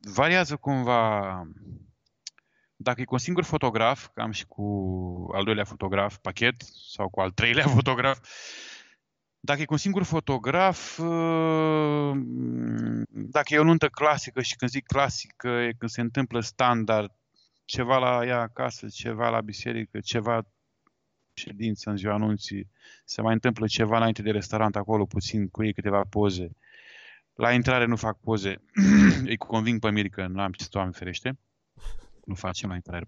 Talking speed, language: 155 wpm, Romanian